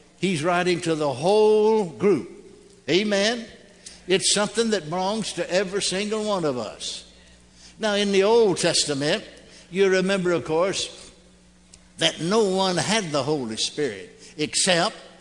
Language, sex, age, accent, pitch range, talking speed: English, male, 60-79, American, 160-200 Hz, 135 wpm